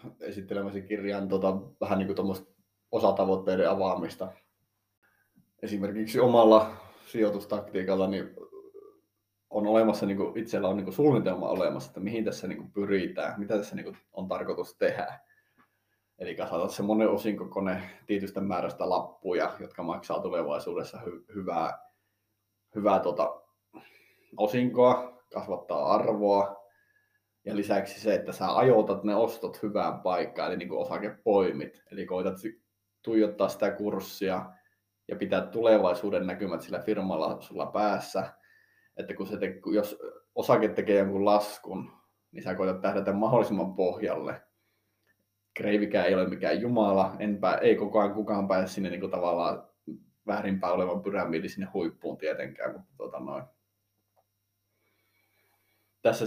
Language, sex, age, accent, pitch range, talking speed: Finnish, male, 20-39, native, 100-110 Hz, 125 wpm